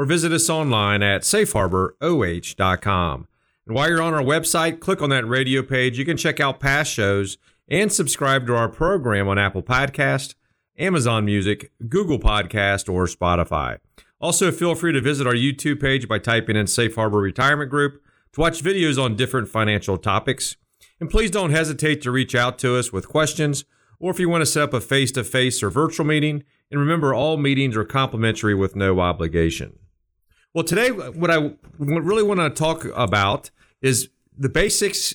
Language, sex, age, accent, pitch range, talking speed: English, male, 40-59, American, 110-150 Hz, 175 wpm